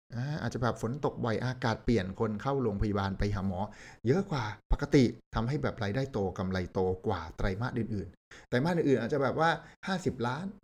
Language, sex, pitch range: Thai, male, 105-135 Hz